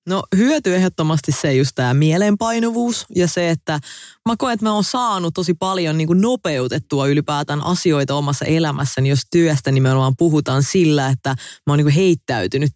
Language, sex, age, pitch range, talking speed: English, female, 20-39, 135-160 Hz, 145 wpm